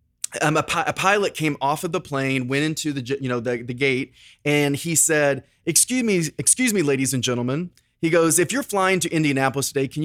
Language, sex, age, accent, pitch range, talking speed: English, male, 30-49, American, 130-175 Hz, 220 wpm